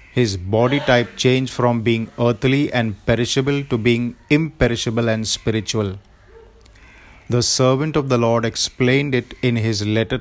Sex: male